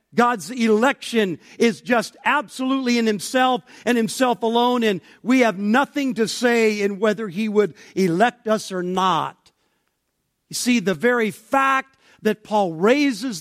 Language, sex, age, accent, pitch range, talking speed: English, male, 50-69, American, 165-230 Hz, 145 wpm